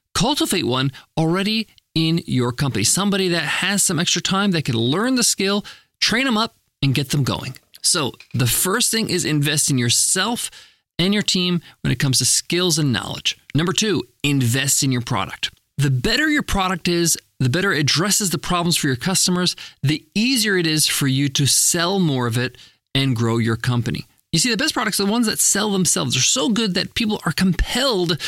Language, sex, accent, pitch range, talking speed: English, male, American, 145-200 Hz, 205 wpm